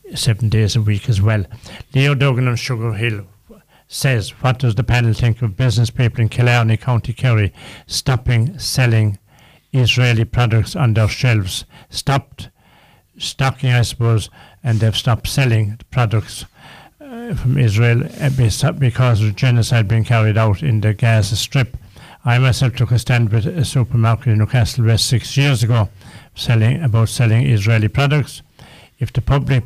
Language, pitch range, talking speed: English, 110-125 Hz, 150 wpm